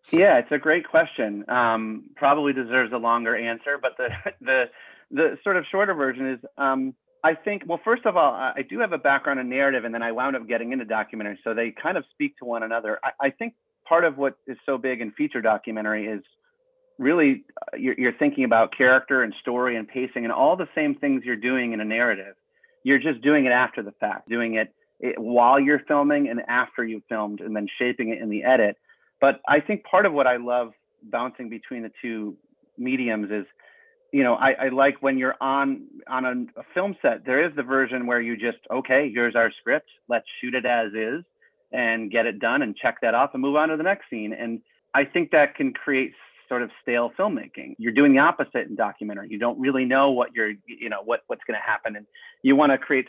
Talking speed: 225 wpm